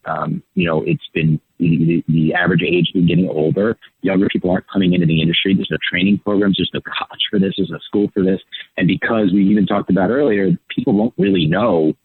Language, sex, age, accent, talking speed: English, male, 30-49, American, 230 wpm